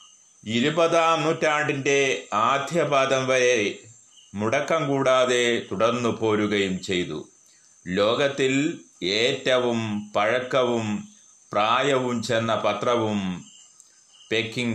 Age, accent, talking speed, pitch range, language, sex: 30-49, native, 65 wpm, 110-145 Hz, Malayalam, male